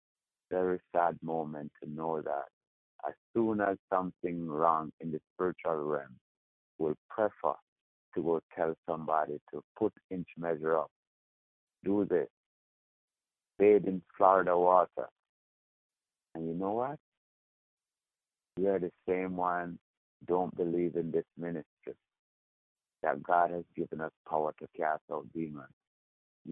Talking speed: 130 wpm